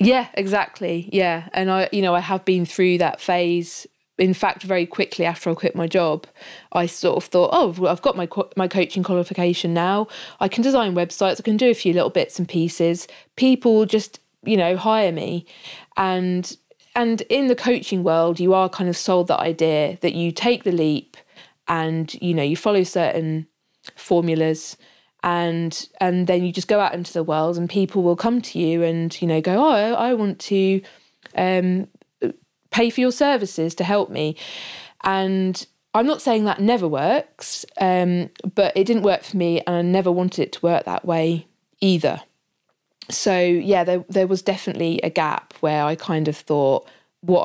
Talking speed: 190 wpm